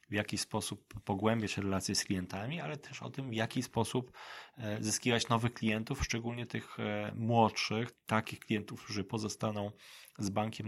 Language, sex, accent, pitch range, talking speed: Polish, male, native, 105-120 Hz, 145 wpm